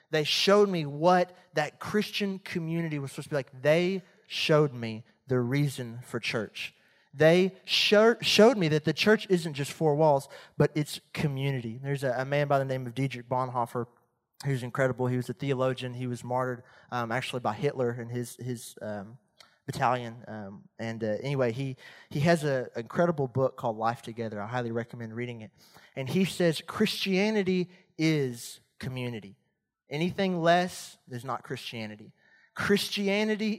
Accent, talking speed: American, 165 wpm